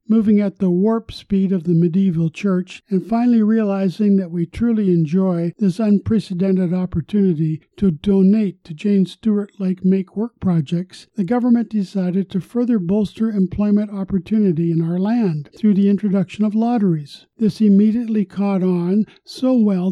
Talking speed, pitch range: 150 wpm, 185-215 Hz